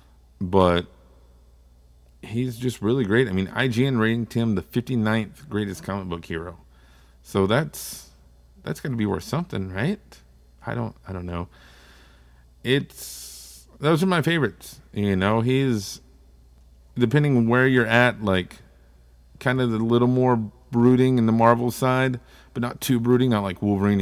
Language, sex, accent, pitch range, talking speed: English, male, American, 85-120 Hz, 150 wpm